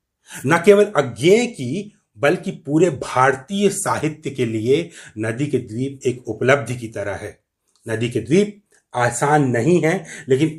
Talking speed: 140 wpm